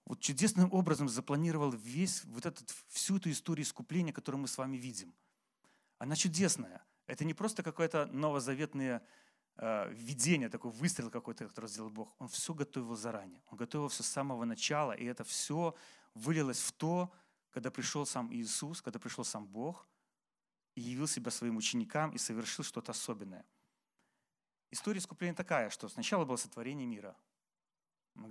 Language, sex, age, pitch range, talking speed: Russian, male, 30-49, 125-160 Hz, 150 wpm